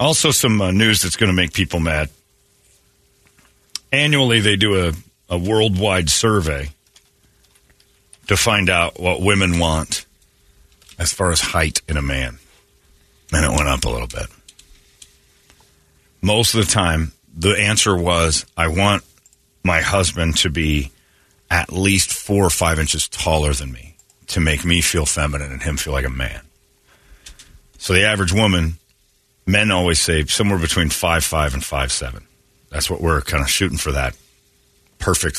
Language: English